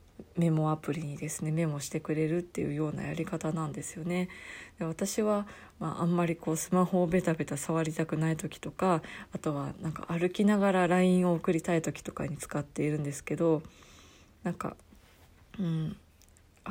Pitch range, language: 155-185 Hz, Japanese